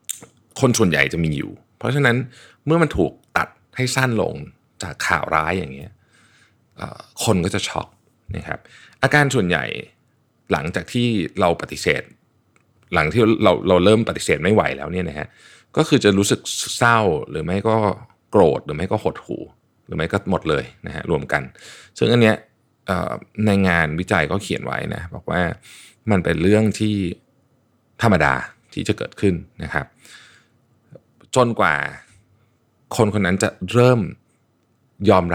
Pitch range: 90-120 Hz